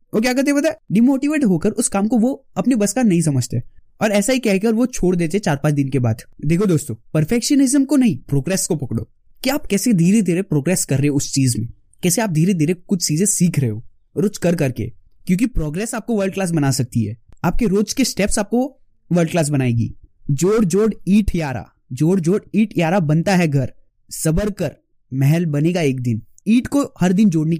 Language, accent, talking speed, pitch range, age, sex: Hindi, native, 190 wpm, 145-215 Hz, 20-39, male